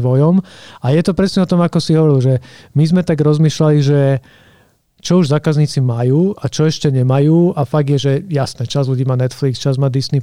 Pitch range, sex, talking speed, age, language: 135-155 Hz, male, 210 wpm, 40-59, Slovak